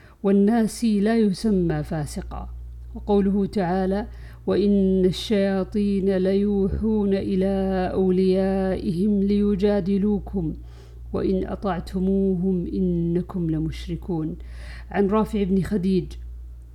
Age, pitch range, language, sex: 50-69, 160-200 Hz, Arabic, female